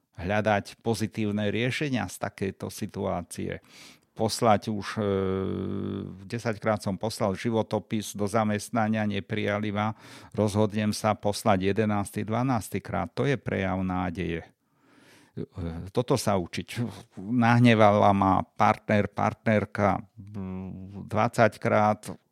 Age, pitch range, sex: 50-69, 95-110 Hz, male